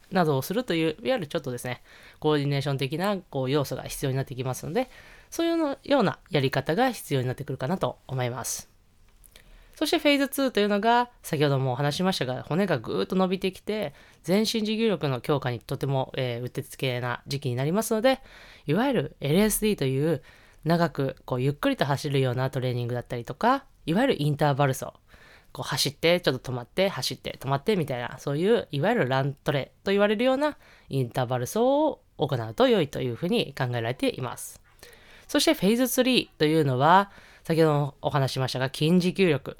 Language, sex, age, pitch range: Japanese, female, 20-39, 130-205 Hz